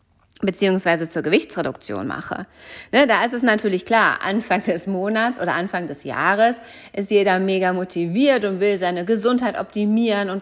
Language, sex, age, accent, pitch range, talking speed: German, female, 40-59, German, 175-220 Hz, 155 wpm